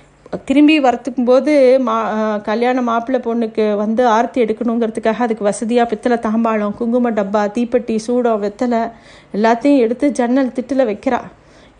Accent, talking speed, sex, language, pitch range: native, 115 wpm, female, Tamil, 220-255 Hz